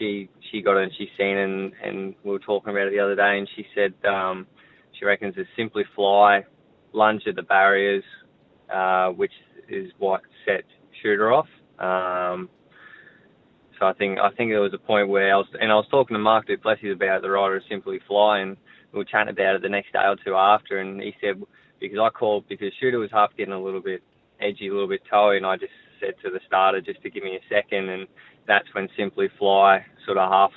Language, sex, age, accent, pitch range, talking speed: English, male, 20-39, Australian, 95-105 Hz, 230 wpm